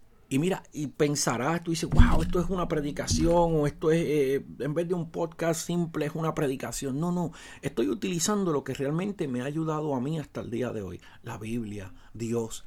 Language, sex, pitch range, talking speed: Spanish, male, 125-175 Hz, 210 wpm